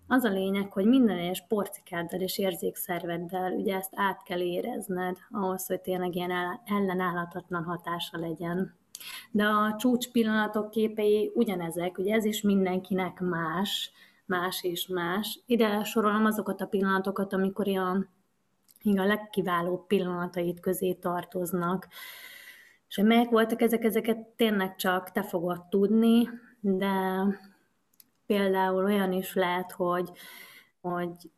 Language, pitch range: Hungarian, 180-210 Hz